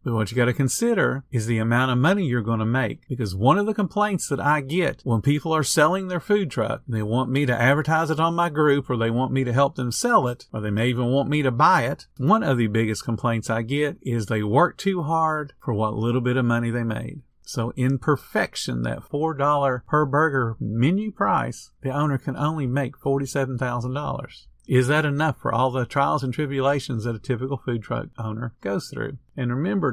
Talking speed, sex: 225 wpm, male